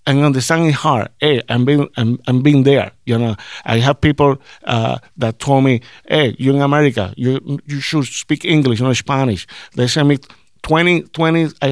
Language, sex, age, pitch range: English, male, 50-69, 115-145 Hz